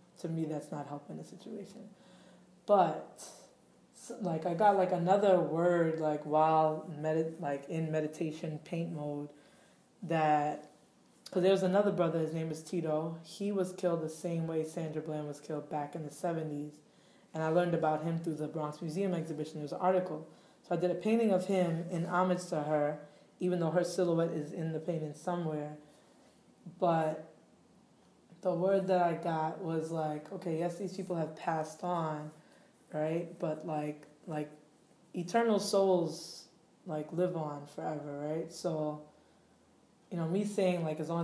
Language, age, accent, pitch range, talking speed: English, 20-39, American, 155-180 Hz, 160 wpm